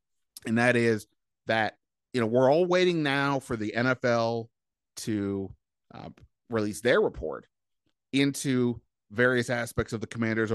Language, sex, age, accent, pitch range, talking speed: English, male, 30-49, American, 105-125 Hz, 135 wpm